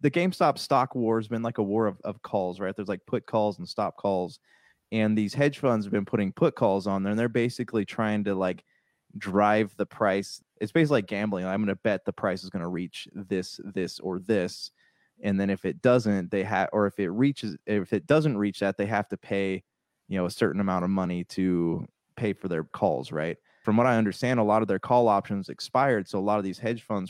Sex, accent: male, American